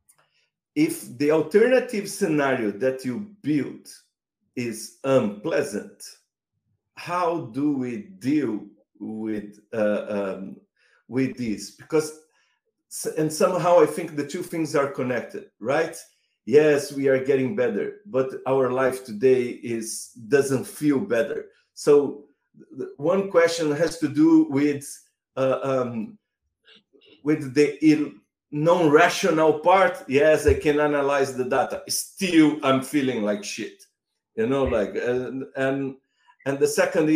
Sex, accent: male, Brazilian